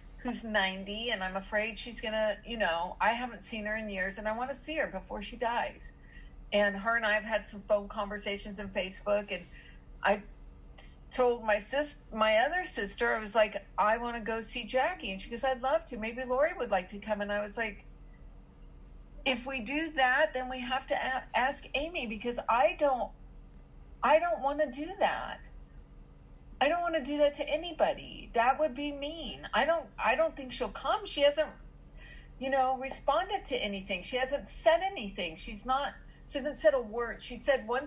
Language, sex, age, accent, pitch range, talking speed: English, female, 50-69, American, 200-265 Hz, 200 wpm